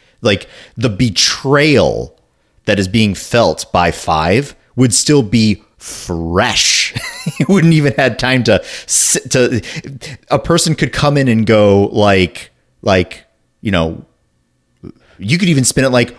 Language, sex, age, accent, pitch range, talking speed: English, male, 30-49, American, 95-130 Hz, 140 wpm